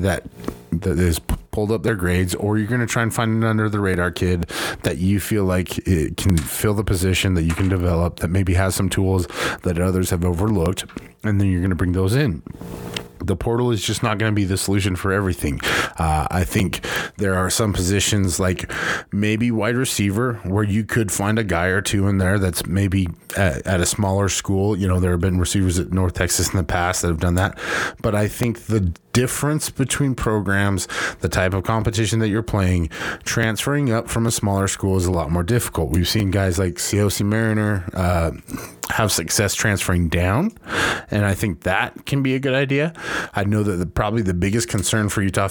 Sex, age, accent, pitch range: male, 20-39, American, 90-105 Hz